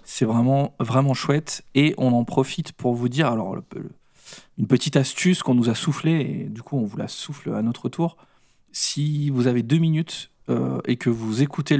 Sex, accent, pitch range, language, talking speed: male, French, 120-140 Hz, French, 210 wpm